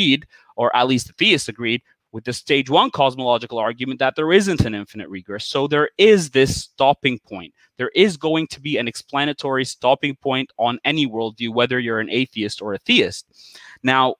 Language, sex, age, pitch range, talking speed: English, male, 30-49, 115-145 Hz, 185 wpm